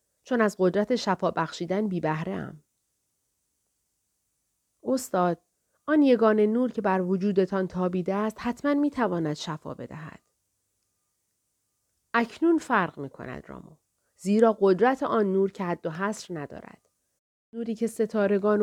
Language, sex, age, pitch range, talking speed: Persian, female, 40-59, 170-225 Hz, 120 wpm